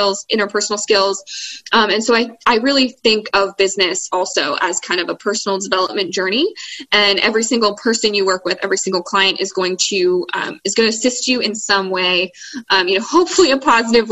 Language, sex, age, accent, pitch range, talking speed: English, female, 20-39, American, 195-245 Hz, 200 wpm